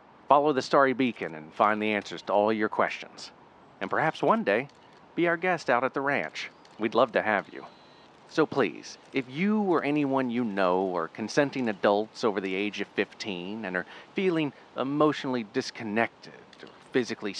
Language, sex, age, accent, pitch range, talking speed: English, male, 40-59, American, 105-150 Hz, 175 wpm